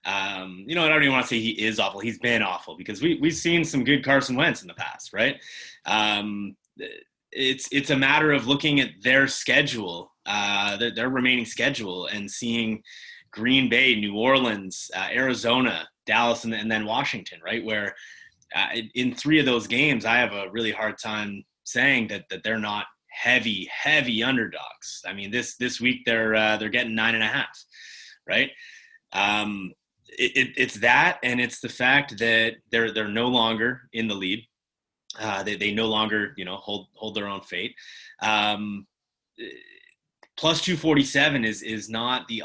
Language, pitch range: English, 105-135 Hz